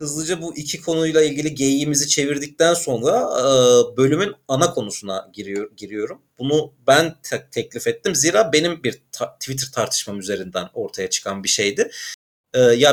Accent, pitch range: native, 120-170 Hz